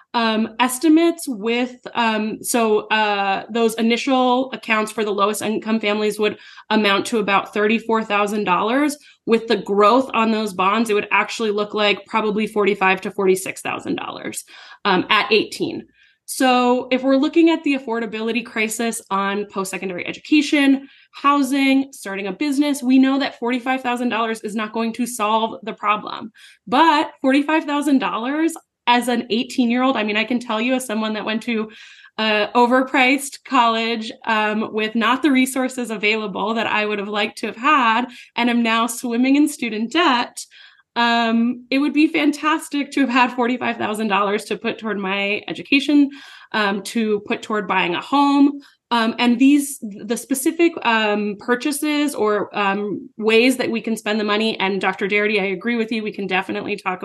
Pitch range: 210-270 Hz